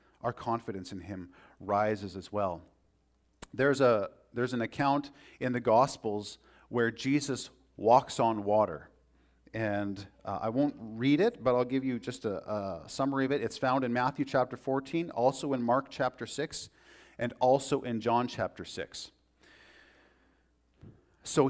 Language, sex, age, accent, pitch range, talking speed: English, male, 40-59, American, 105-140 Hz, 150 wpm